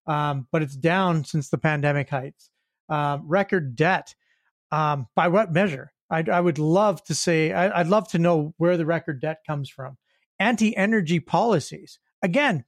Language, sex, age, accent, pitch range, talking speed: English, male, 40-59, American, 155-200 Hz, 155 wpm